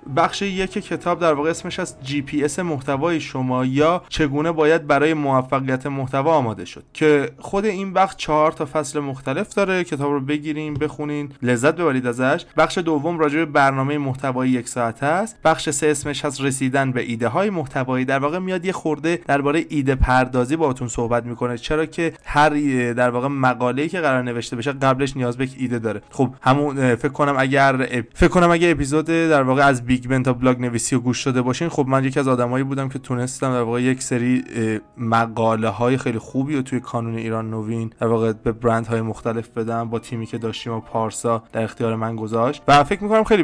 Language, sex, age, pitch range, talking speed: Persian, male, 30-49, 125-155 Hz, 190 wpm